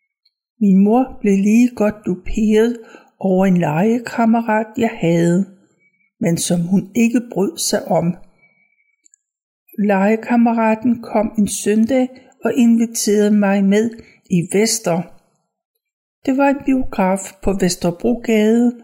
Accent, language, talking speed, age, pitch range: native, Danish, 110 wpm, 60-79, 190-240 Hz